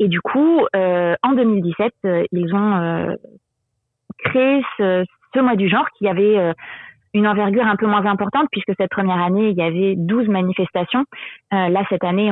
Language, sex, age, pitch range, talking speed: French, female, 30-49, 185-220 Hz, 180 wpm